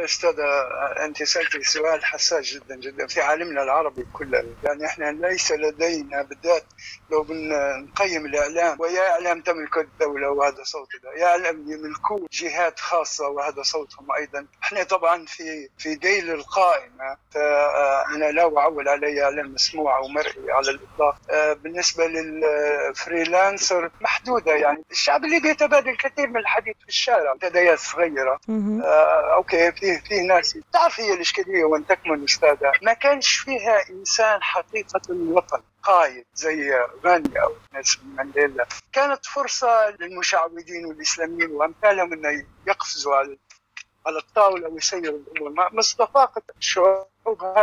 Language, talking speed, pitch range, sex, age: Arabic, 125 wpm, 150-200 Hz, male, 60-79